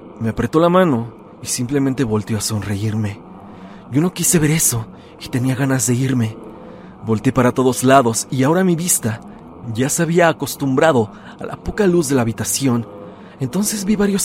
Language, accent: Spanish, Mexican